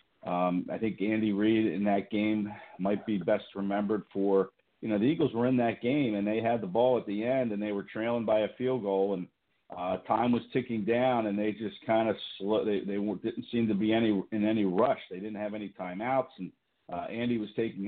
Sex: male